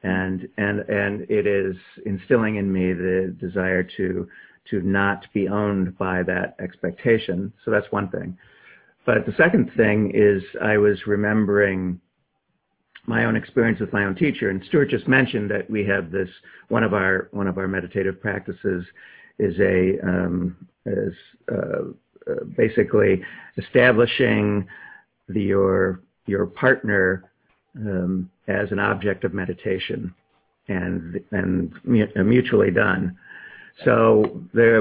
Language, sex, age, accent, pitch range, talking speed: English, male, 50-69, American, 95-105 Hz, 135 wpm